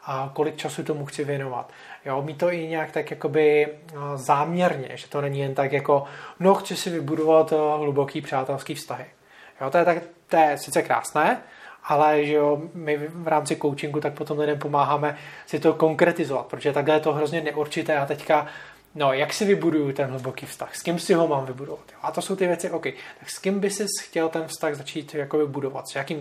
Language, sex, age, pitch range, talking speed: Czech, male, 20-39, 145-165 Hz, 205 wpm